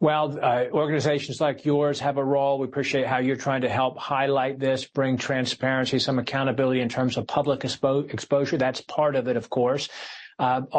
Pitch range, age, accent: 115-135 Hz, 40-59, American